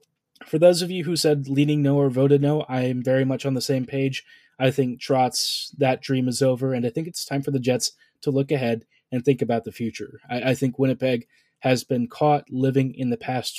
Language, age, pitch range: English, 20-39, 130-150 Hz